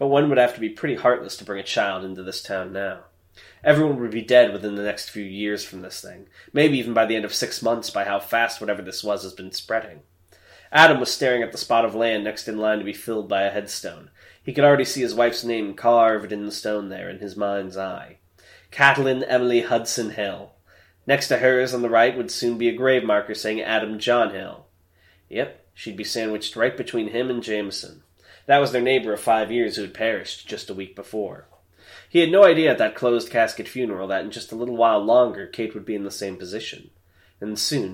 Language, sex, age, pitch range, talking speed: English, male, 20-39, 100-120 Hz, 230 wpm